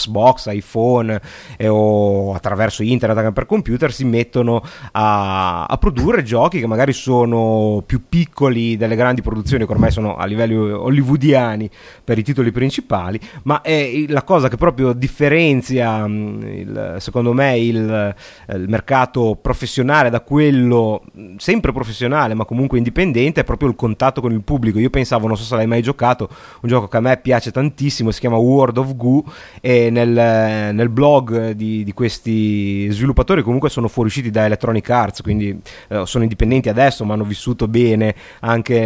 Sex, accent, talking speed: male, native, 160 wpm